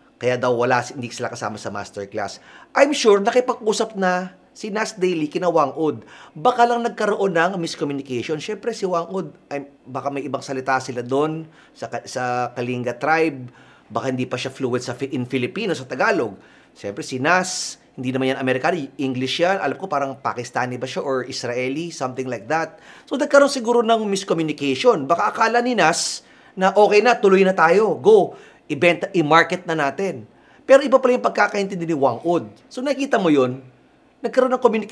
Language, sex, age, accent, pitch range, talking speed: Filipino, male, 30-49, native, 130-210 Hz, 175 wpm